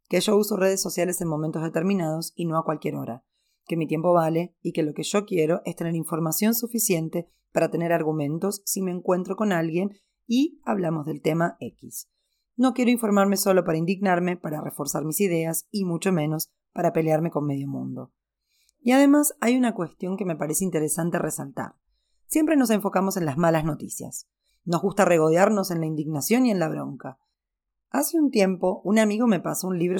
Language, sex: Spanish, female